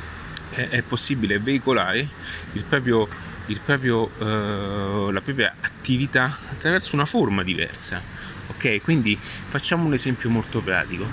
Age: 30-49